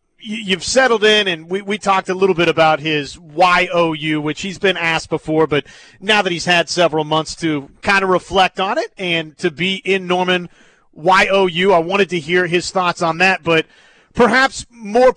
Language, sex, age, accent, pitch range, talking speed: English, male, 30-49, American, 160-195 Hz, 190 wpm